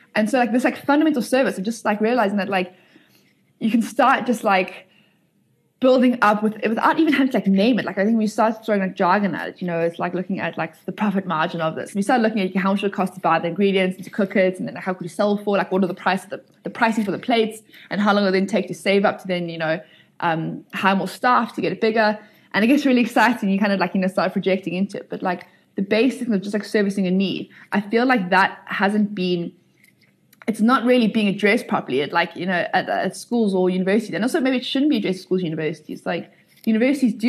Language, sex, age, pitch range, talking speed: English, female, 20-39, 185-225 Hz, 270 wpm